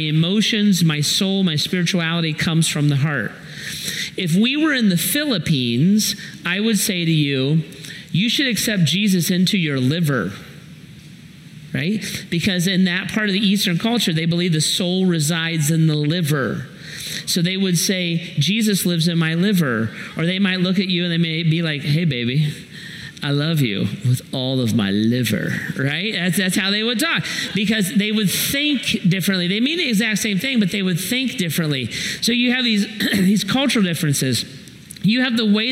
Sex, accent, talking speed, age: male, American, 180 wpm, 40-59